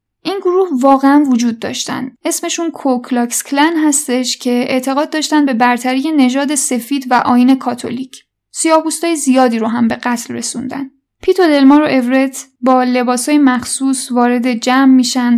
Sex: female